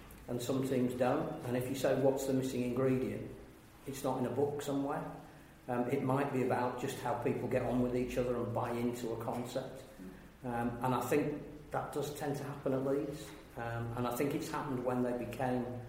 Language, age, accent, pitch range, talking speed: English, 40-59, British, 120-135 Hz, 210 wpm